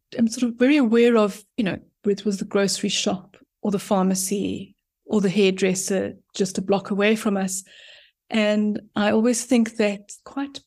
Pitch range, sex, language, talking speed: 200-235 Hz, female, English, 175 wpm